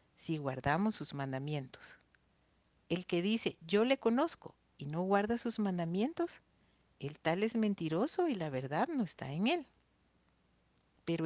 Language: Spanish